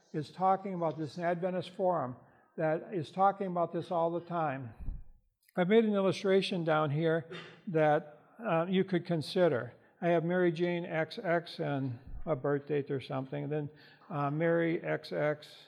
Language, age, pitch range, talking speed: English, 60-79, 150-180 Hz, 155 wpm